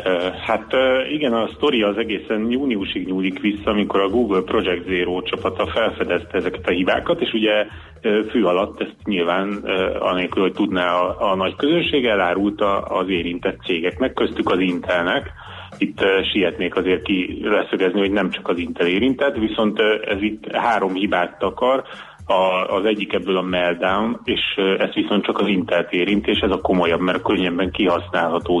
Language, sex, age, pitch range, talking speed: Hungarian, male, 30-49, 90-105 Hz, 155 wpm